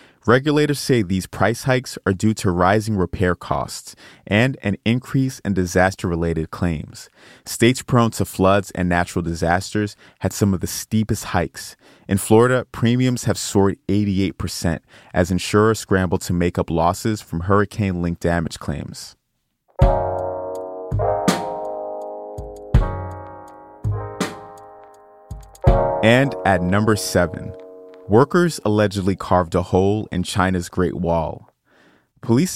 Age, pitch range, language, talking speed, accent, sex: 30-49, 90-110 Hz, English, 110 wpm, American, male